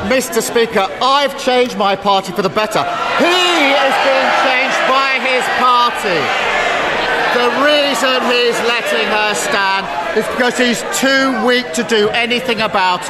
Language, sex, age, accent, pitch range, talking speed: English, male, 50-69, British, 210-260 Hz, 140 wpm